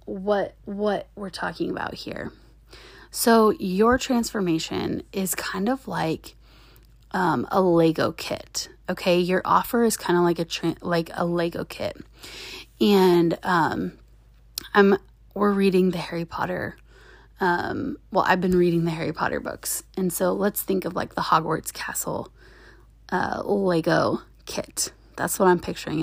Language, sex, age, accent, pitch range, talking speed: English, female, 20-39, American, 170-205 Hz, 145 wpm